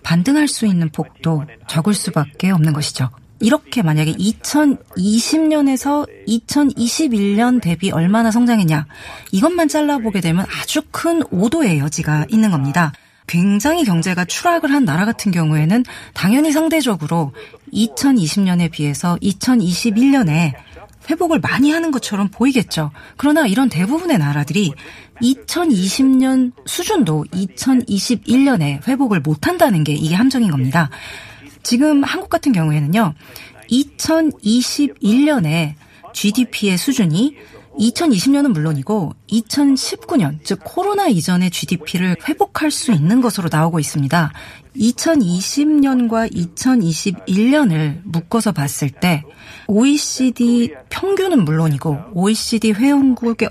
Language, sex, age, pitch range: Korean, female, 30-49, 165-270 Hz